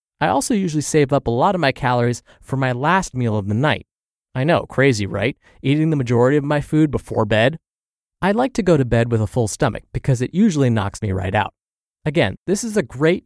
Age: 20-39